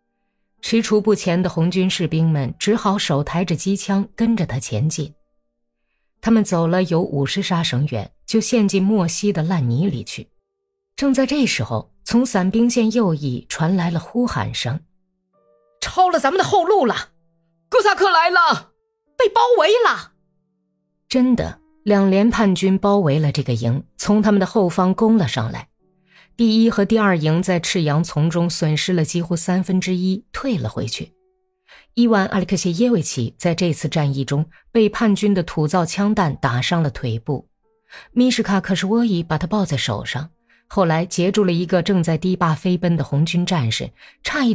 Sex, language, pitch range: female, Chinese, 155-215 Hz